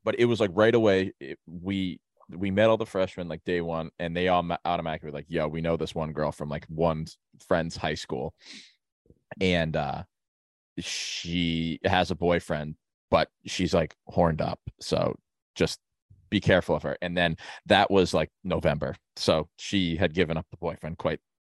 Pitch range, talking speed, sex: 80-95 Hz, 175 wpm, male